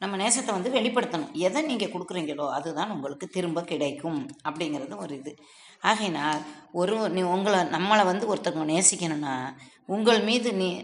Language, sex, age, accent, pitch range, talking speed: Tamil, female, 20-39, native, 165-215 Hz, 115 wpm